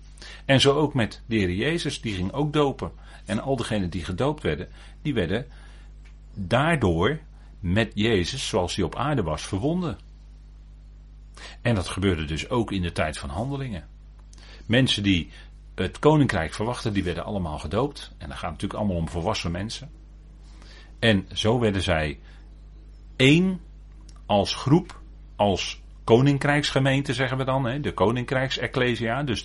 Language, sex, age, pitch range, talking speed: Dutch, male, 40-59, 90-135 Hz, 145 wpm